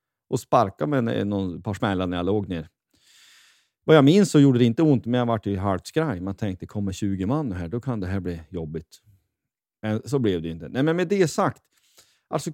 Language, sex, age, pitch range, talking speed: Swedish, male, 40-59, 90-125 Hz, 220 wpm